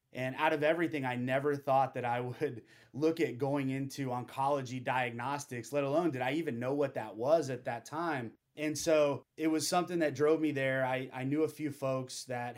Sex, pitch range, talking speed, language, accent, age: male, 115-145 Hz, 210 wpm, English, American, 30-49